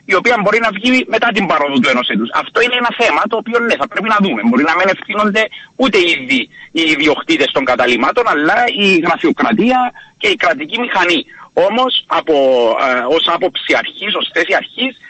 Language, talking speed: Greek, 185 wpm